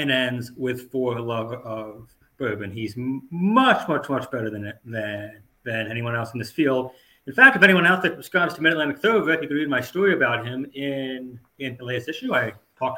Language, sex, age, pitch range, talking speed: English, male, 30-49, 120-160 Hz, 210 wpm